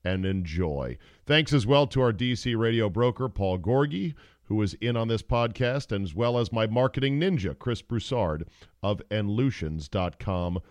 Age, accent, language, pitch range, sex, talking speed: 40-59, American, English, 100-135 Hz, male, 160 wpm